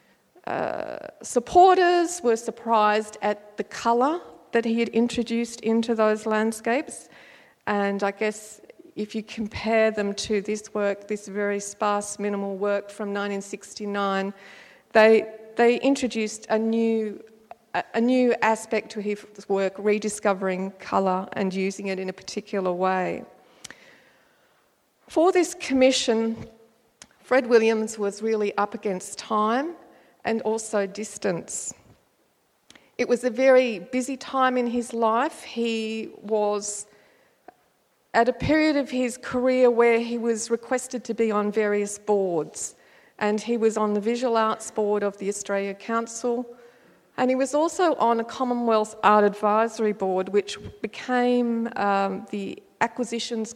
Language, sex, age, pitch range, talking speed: English, female, 40-59, 205-235 Hz, 130 wpm